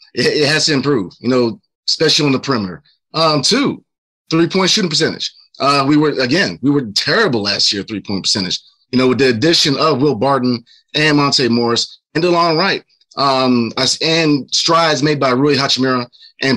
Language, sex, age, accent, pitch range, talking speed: English, male, 30-49, American, 130-160 Hz, 185 wpm